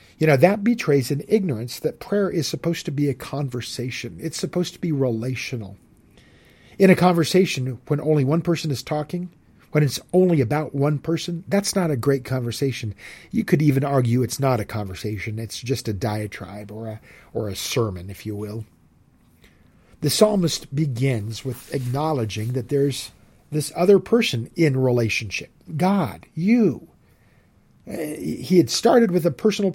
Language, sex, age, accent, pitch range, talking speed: English, male, 50-69, American, 120-175 Hz, 160 wpm